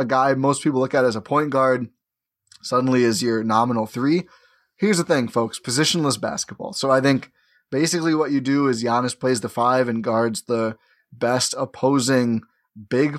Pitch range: 120-155 Hz